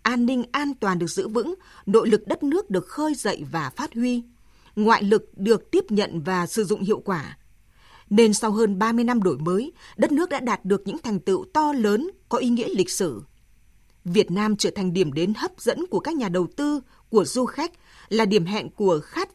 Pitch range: 185-245 Hz